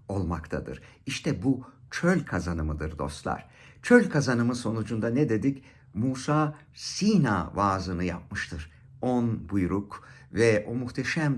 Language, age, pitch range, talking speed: Turkish, 60-79, 100-140 Hz, 105 wpm